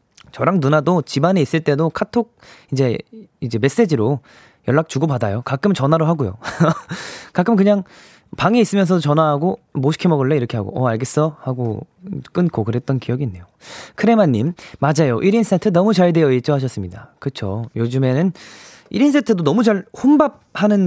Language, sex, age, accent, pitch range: Korean, male, 20-39, native, 125-195 Hz